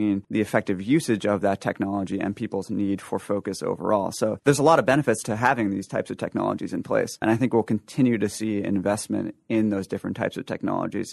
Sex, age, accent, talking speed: male, 30-49, American, 215 wpm